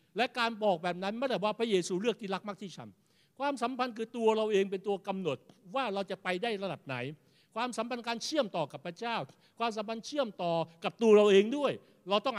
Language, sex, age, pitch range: Thai, male, 60-79, 180-225 Hz